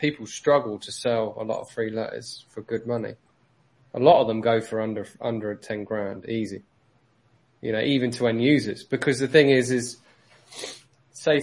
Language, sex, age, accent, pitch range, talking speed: English, male, 20-39, British, 110-130 Hz, 185 wpm